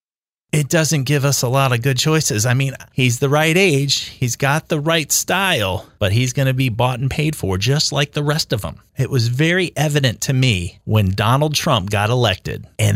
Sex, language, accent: male, English, American